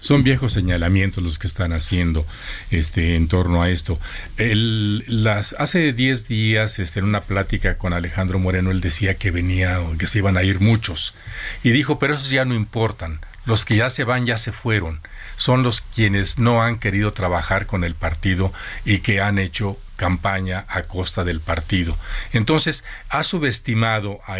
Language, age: Spanish, 50-69